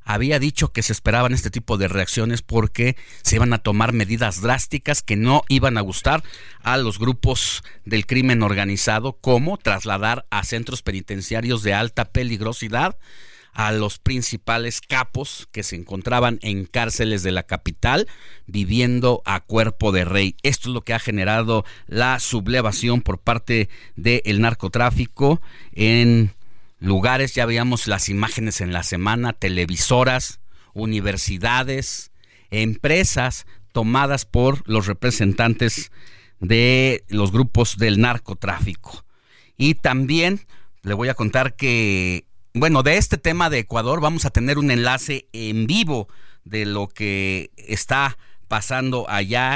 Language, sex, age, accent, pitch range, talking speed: Spanish, male, 40-59, Mexican, 105-125 Hz, 135 wpm